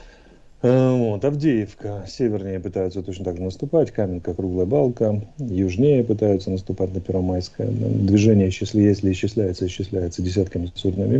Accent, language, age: native, Russian, 40-59